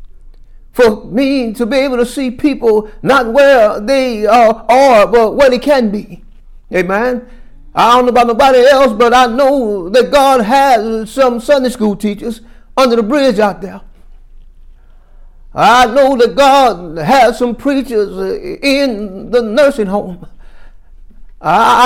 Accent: American